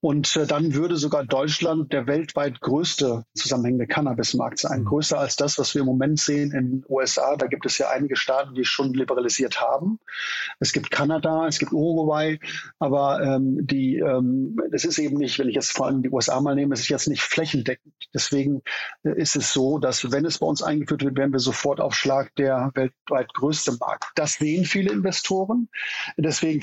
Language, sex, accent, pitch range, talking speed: German, male, German, 135-160 Hz, 195 wpm